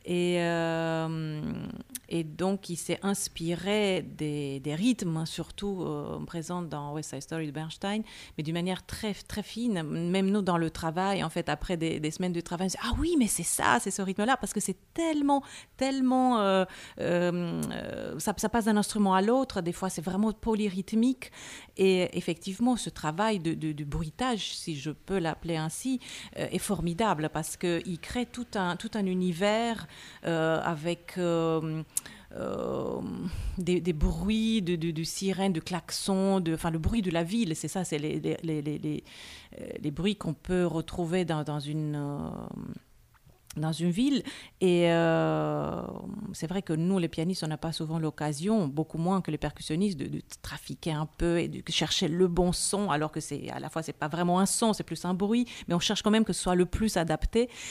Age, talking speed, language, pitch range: 40-59, 195 wpm, French, 160-200 Hz